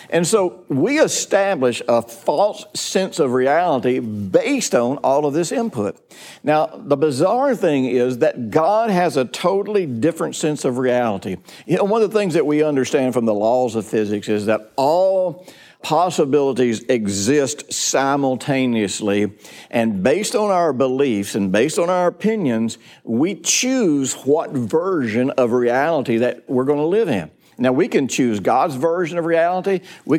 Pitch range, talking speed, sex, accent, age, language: 125-180 Hz, 160 wpm, male, American, 60-79, English